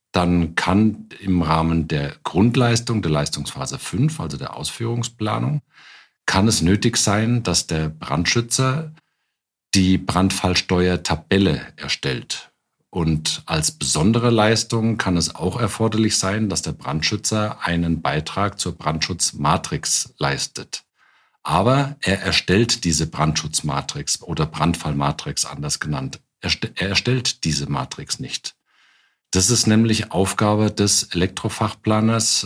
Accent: German